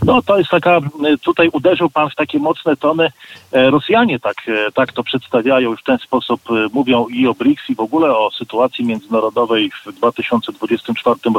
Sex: male